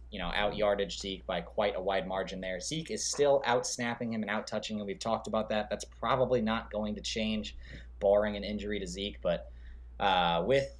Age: 20-39